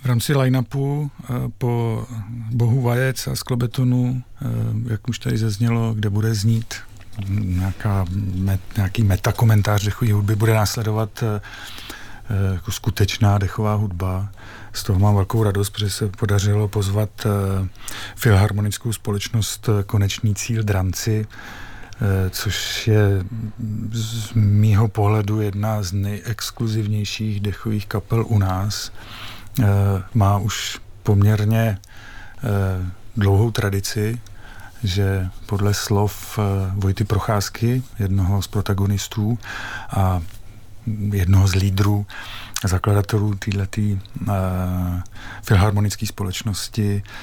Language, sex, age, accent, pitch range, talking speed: Czech, male, 40-59, native, 100-110 Hz, 100 wpm